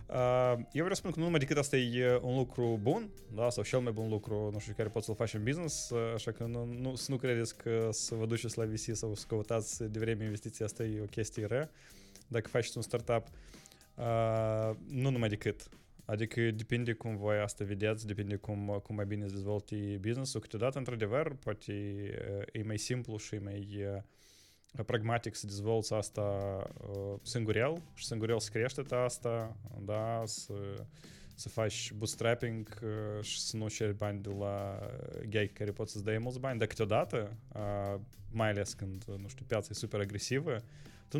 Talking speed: 170 wpm